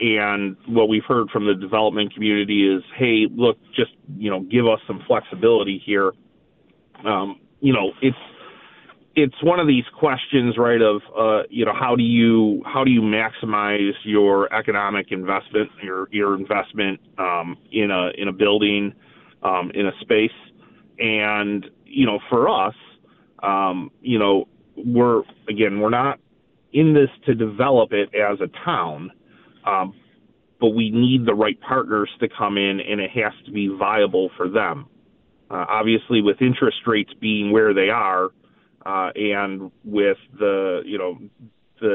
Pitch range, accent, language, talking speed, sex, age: 100-120 Hz, American, English, 155 wpm, male, 30-49